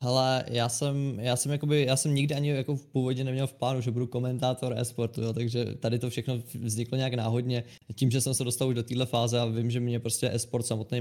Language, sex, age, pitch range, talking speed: Czech, male, 20-39, 115-130 Hz, 240 wpm